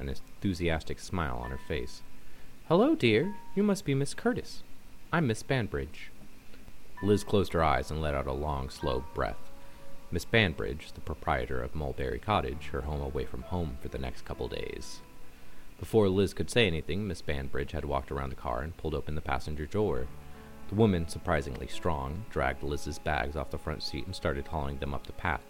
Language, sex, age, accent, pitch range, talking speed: English, male, 30-49, American, 70-90 Hz, 190 wpm